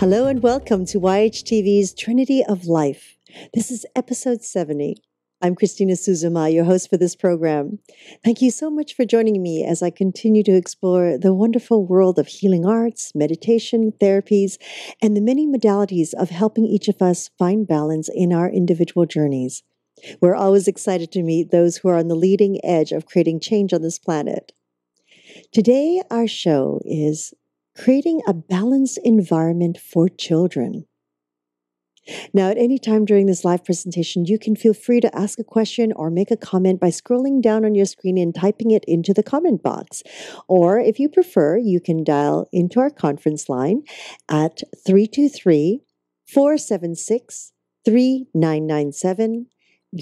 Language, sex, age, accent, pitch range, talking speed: English, female, 50-69, American, 170-225 Hz, 155 wpm